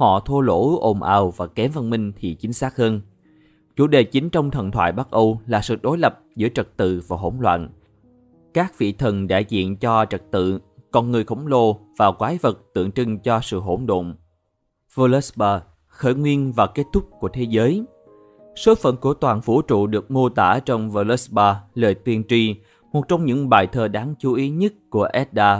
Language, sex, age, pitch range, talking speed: Vietnamese, male, 20-39, 105-130 Hz, 200 wpm